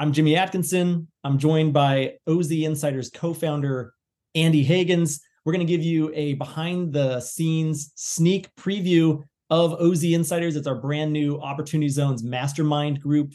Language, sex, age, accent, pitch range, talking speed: English, male, 30-49, American, 145-165 Hz, 150 wpm